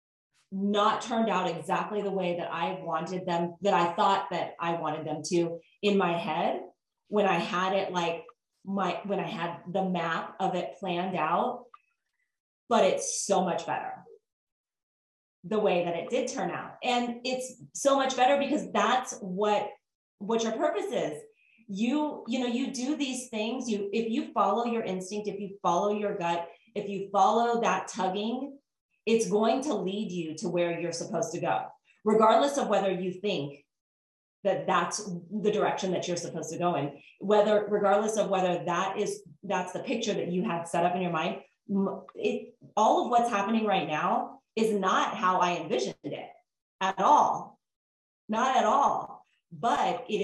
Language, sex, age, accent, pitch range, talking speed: English, female, 30-49, American, 175-220 Hz, 175 wpm